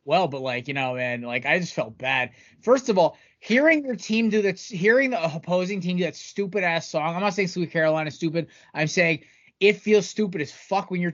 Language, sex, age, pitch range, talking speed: English, male, 20-39, 145-175 Hz, 230 wpm